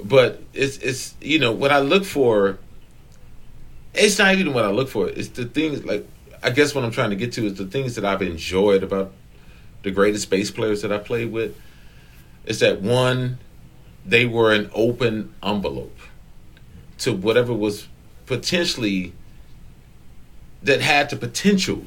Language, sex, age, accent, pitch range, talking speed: English, male, 40-59, American, 95-135 Hz, 160 wpm